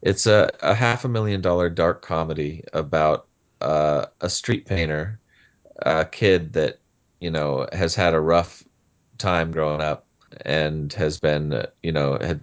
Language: English